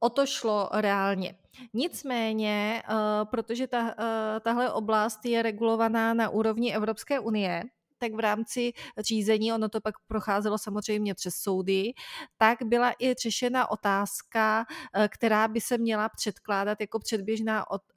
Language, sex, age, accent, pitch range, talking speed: Czech, female, 30-49, native, 200-235 Hz, 125 wpm